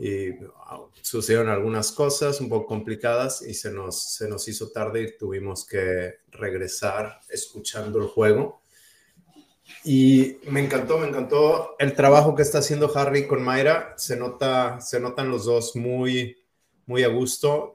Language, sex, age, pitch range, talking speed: Spanish, male, 30-49, 105-130 Hz, 150 wpm